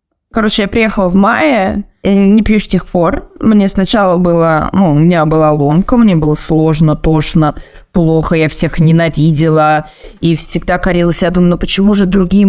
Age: 20-39